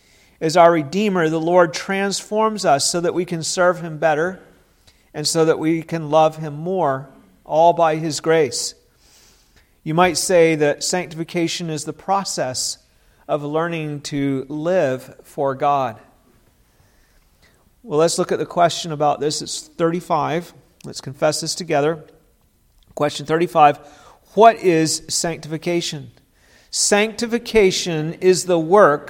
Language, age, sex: English, 50-69, male